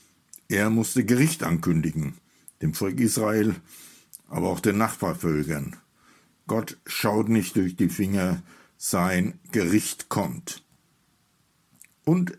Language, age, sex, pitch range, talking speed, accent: German, 60-79, male, 95-135 Hz, 100 wpm, German